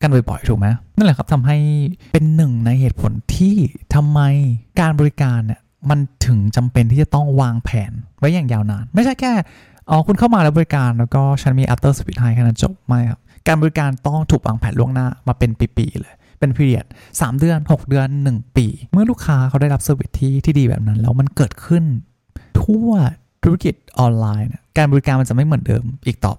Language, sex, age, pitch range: Thai, male, 20-39, 115-150 Hz